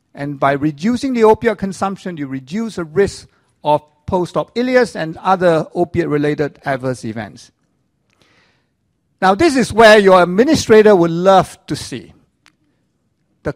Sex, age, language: male, 50-69, English